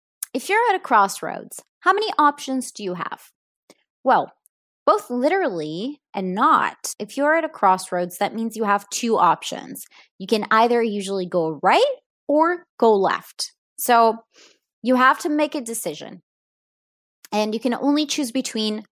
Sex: female